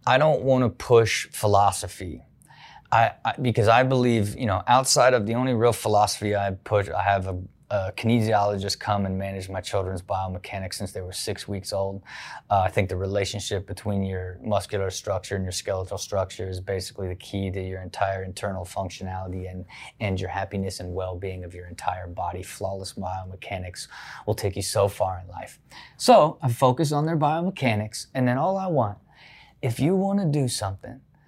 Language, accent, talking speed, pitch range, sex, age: English, American, 180 wpm, 100-130 Hz, male, 20-39